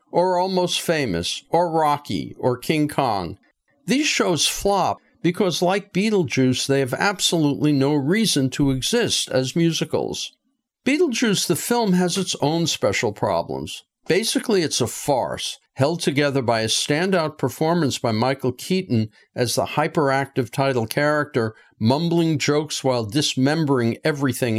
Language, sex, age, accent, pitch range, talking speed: English, male, 50-69, American, 130-175 Hz, 130 wpm